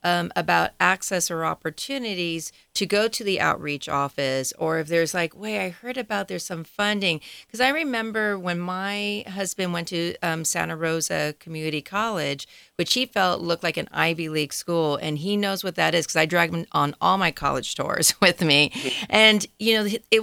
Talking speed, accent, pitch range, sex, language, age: 195 wpm, American, 160-205 Hz, female, English, 40-59